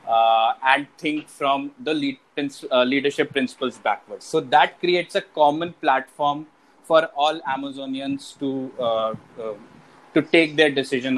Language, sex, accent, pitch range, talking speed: English, male, Indian, 130-160 Hz, 145 wpm